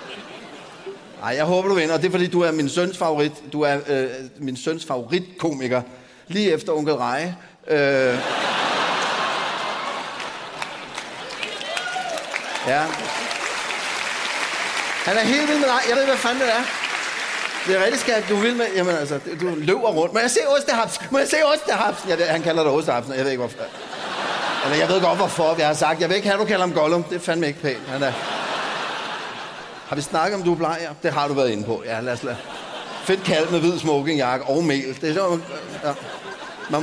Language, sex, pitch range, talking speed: Danish, male, 135-185 Hz, 185 wpm